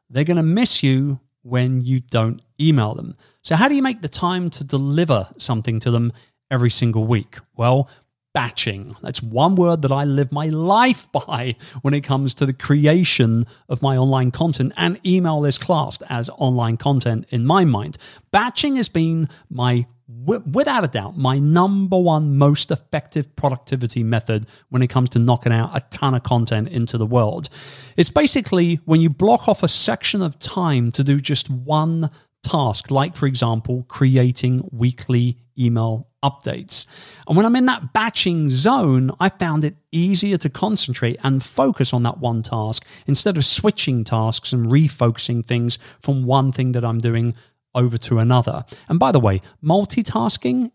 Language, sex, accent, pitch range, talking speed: English, male, British, 120-155 Hz, 170 wpm